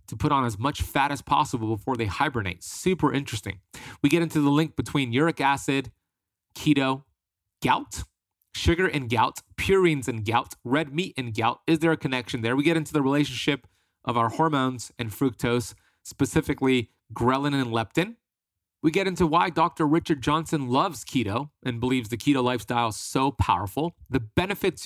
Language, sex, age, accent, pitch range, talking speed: English, male, 30-49, American, 110-145 Hz, 170 wpm